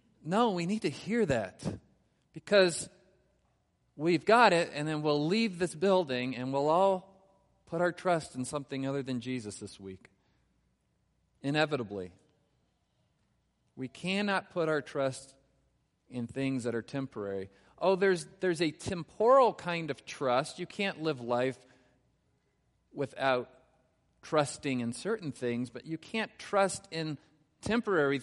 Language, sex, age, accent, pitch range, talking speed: English, male, 40-59, American, 115-160 Hz, 135 wpm